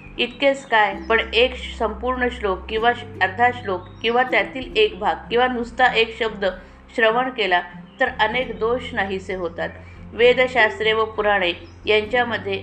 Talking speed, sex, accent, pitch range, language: 135 wpm, female, native, 190-240 Hz, Marathi